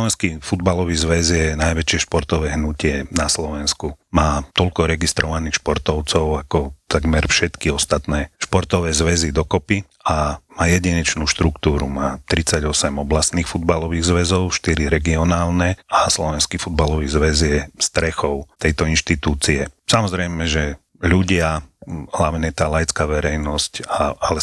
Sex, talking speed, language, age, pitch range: male, 115 wpm, Slovak, 40-59, 75-85 Hz